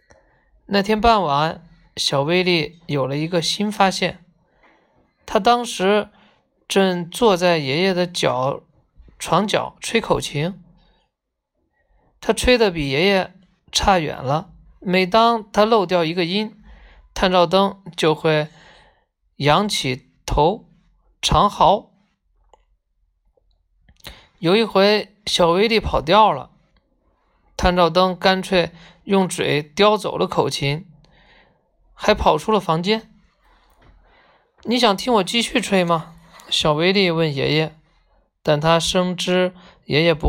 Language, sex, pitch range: Chinese, male, 165-205 Hz